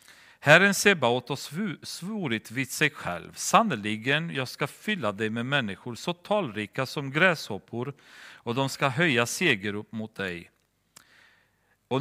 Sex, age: male, 40-59